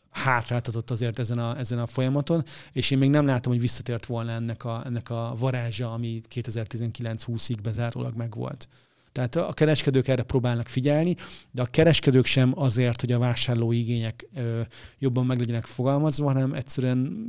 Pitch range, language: 120-135 Hz, Hungarian